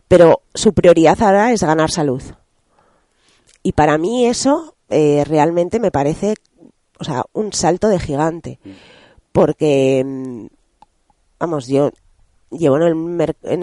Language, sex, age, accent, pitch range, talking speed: Spanish, female, 30-49, Spanish, 145-185 Hz, 130 wpm